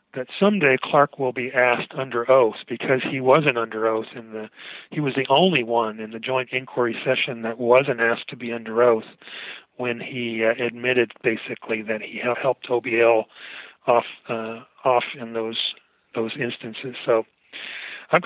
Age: 40-59